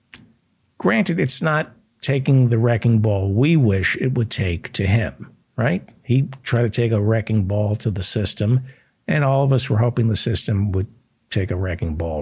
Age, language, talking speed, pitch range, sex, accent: 60-79, English, 185 wpm, 100-130 Hz, male, American